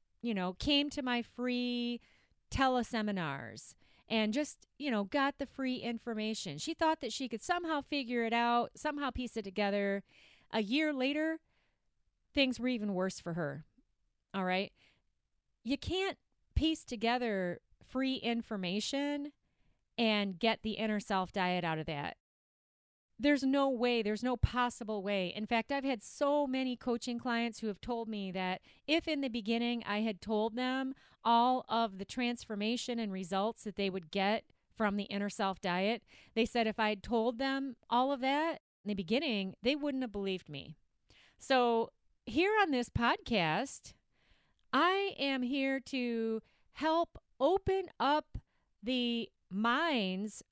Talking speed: 155 wpm